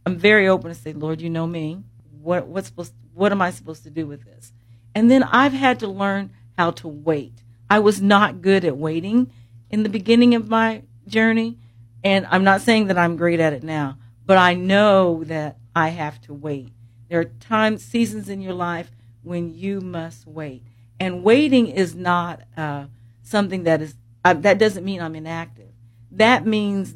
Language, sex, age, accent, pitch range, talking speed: English, female, 50-69, American, 140-195 Hz, 195 wpm